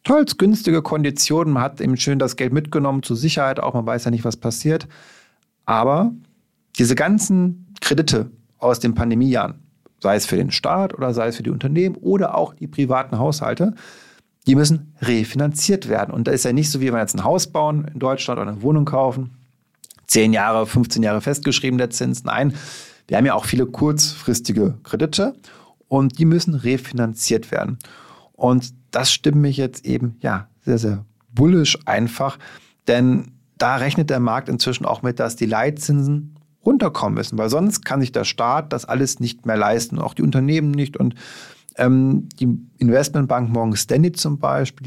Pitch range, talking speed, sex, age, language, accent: 120-150 Hz, 175 wpm, male, 40-59, German, German